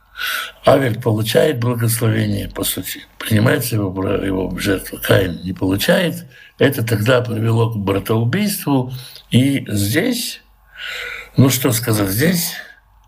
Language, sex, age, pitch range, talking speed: Russian, male, 60-79, 115-155 Hz, 105 wpm